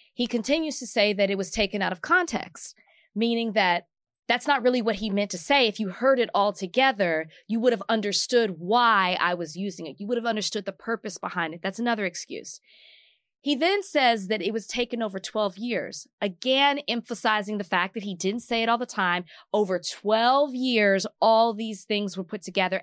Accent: American